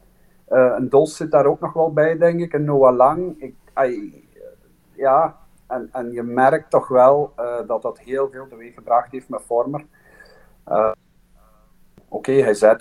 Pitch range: 115-140 Hz